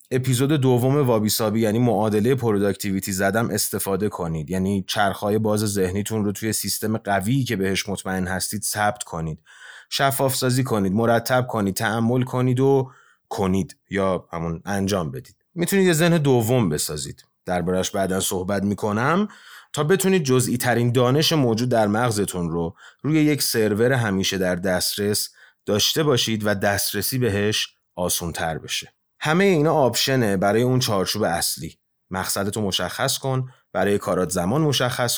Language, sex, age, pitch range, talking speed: Persian, male, 30-49, 100-135 Hz, 140 wpm